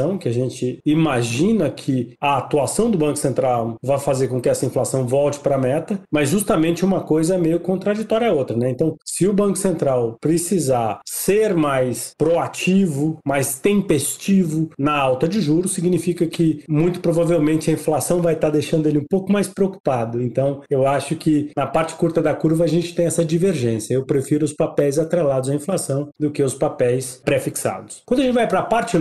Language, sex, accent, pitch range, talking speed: Portuguese, male, Brazilian, 140-175 Hz, 190 wpm